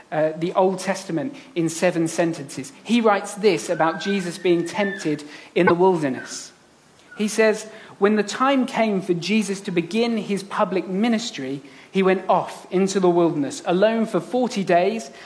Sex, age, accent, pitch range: male, 40-59, British, 160-210 Hz